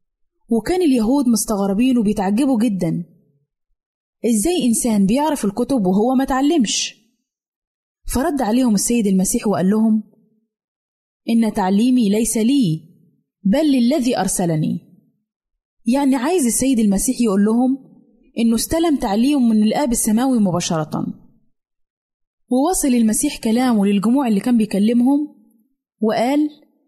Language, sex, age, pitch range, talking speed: Arabic, female, 20-39, 205-265 Hz, 105 wpm